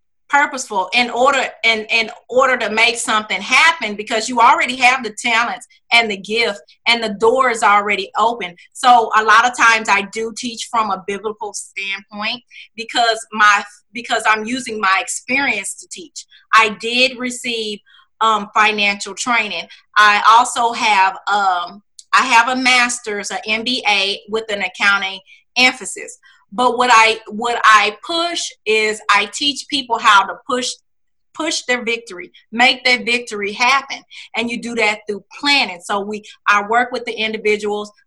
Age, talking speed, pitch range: 30-49, 155 wpm, 205-245 Hz